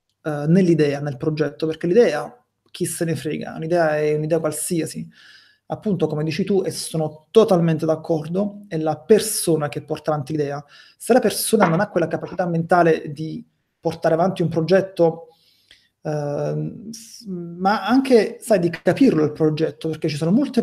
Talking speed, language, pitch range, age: 155 wpm, Italian, 160-195 Hz, 30-49